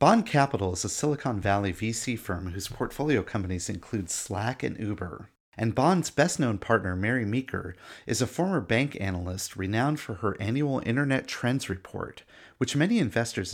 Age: 30-49